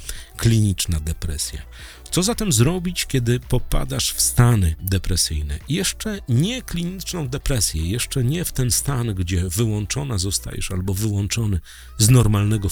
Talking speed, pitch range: 125 wpm, 85-130 Hz